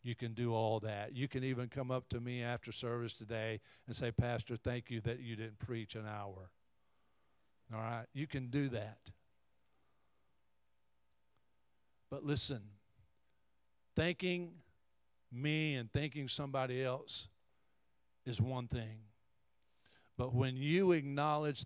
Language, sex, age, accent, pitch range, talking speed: English, male, 50-69, American, 110-145 Hz, 130 wpm